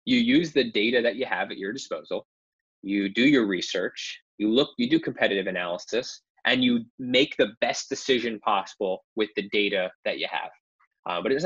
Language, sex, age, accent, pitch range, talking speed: English, male, 20-39, American, 105-155 Hz, 190 wpm